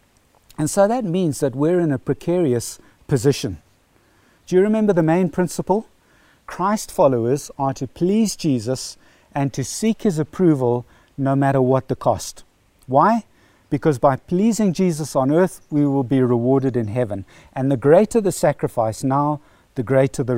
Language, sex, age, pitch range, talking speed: English, male, 60-79, 120-170 Hz, 160 wpm